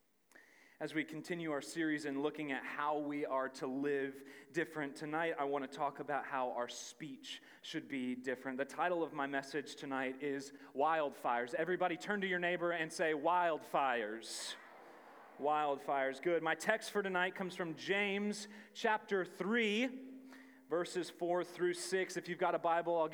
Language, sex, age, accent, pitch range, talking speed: English, male, 30-49, American, 140-180 Hz, 165 wpm